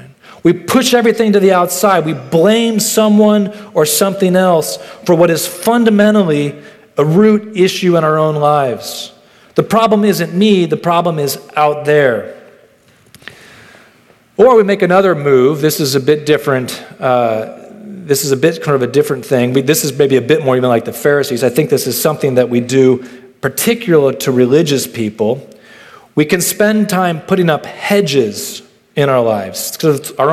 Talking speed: 170 wpm